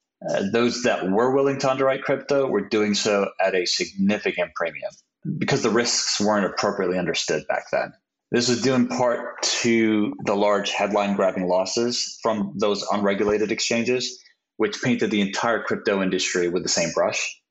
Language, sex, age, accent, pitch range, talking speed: English, male, 30-49, American, 95-120 Hz, 165 wpm